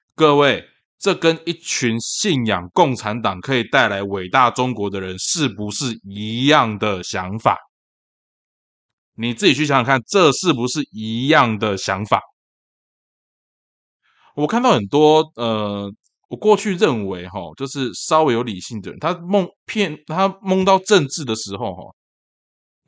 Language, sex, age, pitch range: Chinese, male, 20-39, 100-150 Hz